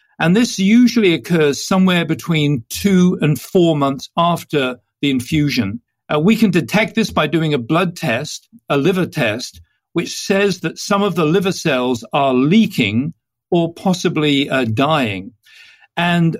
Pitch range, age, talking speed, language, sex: 140-190 Hz, 50-69, 150 wpm, English, male